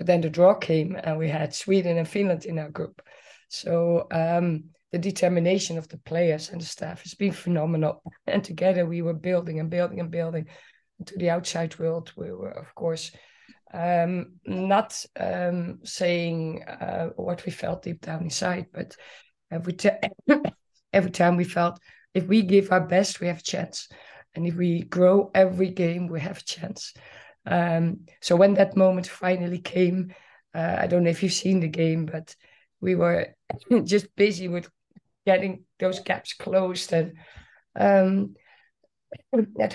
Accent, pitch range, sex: Dutch, 165-190 Hz, female